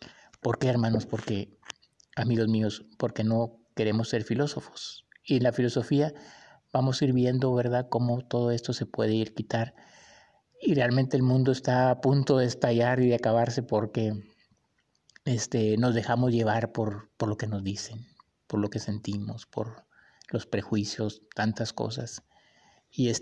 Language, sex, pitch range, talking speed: Spanish, male, 110-135 Hz, 160 wpm